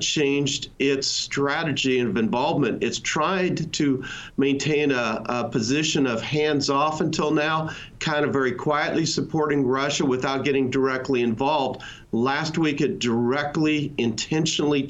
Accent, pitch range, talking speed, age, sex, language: American, 130-155 Hz, 130 wpm, 50-69, male, English